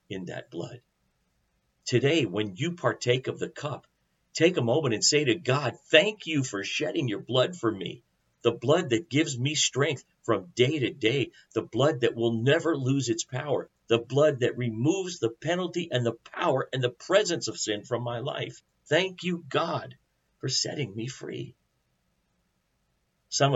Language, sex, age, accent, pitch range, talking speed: English, male, 50-69, American, 120-165 Hz, 175 wpm